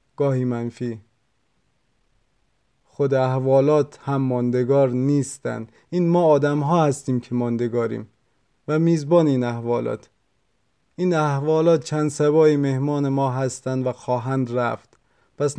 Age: 30-49